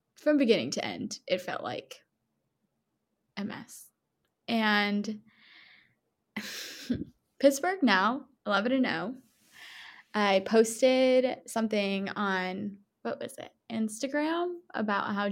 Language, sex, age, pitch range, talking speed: English, female, 10-29, 205-255 Hz, 105 wpm